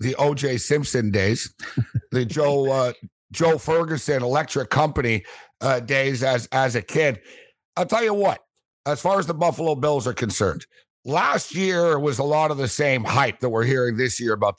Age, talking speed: 60-79, 180 wpm